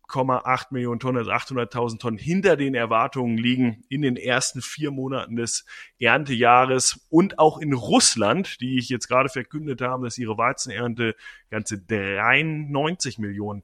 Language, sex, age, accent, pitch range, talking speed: German, male, 30-49, German, 110-140 Hz, 135 wpm